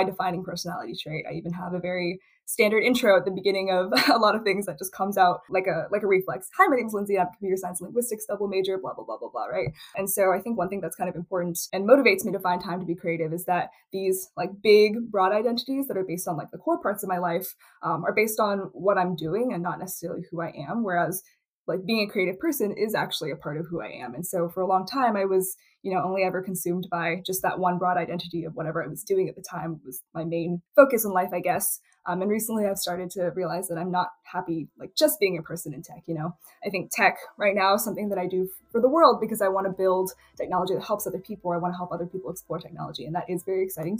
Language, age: English, 10-29